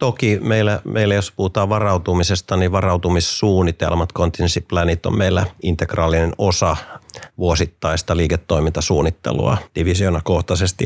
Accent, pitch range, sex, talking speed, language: native, 85-100 Hz, male, 95 wpm, Finnish